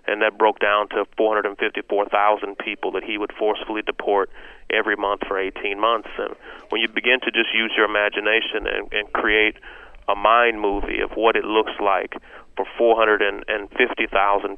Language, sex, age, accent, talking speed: English, male, 30-49, American, 160 wpm